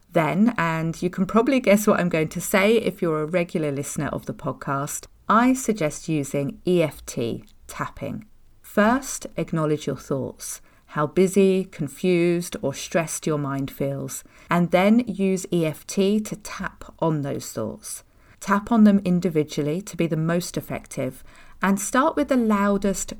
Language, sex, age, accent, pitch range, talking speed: English, female, 40-59, British, 150-200 Hz, 155 wpm